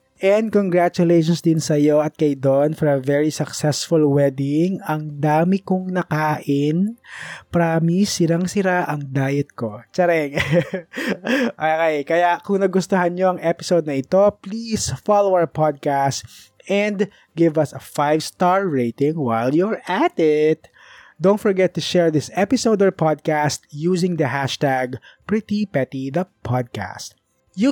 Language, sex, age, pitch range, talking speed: Filipino, male, 20-39, 145-185 Hz, 130 wpm